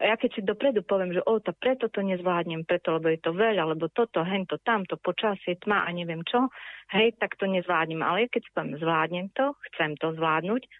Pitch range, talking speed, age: 170-210 Hz, 215 wpm, 30-49